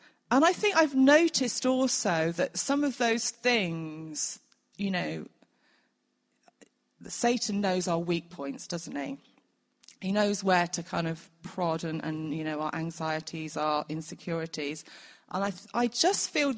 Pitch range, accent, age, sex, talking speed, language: 160-210 Hz, British, 30-49, female, 150 wpm, English